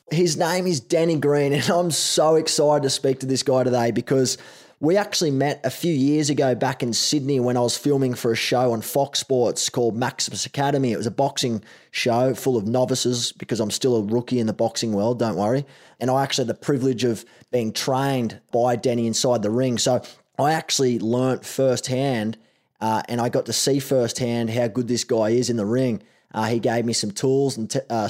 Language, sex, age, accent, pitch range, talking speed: English, male, 20-39, Australian, 120-135 Hz, 215 wpm